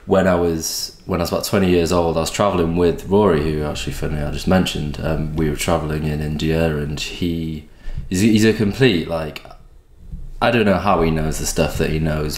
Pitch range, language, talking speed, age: 80-95 Hz, English, 215 wpm, 20-39